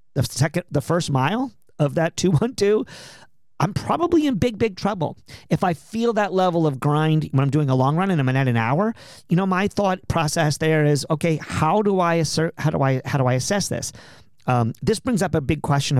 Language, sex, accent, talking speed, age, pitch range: English, male, American, 230 wpm, 40-59, 130-175 Hz